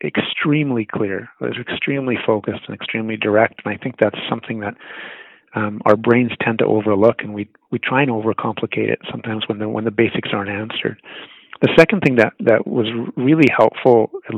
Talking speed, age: 190 wpm, 40-59